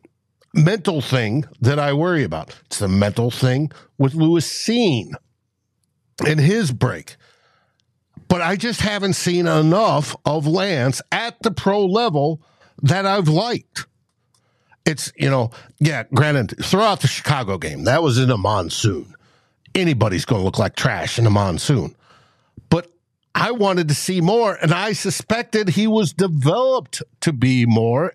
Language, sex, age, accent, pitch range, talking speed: English, male, 60-79, American, 135-185 Hz, 145 wpm